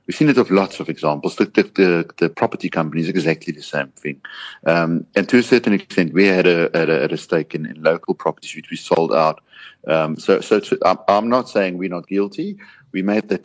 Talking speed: 220 wpm